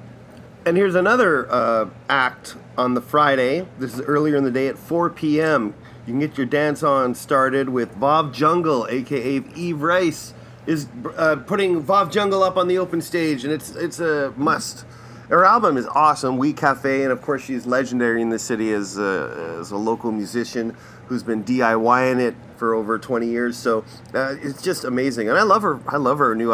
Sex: male